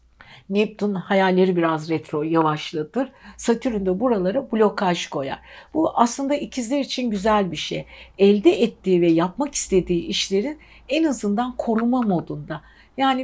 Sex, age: female, 60-79